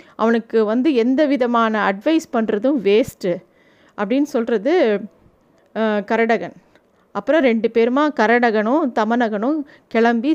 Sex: female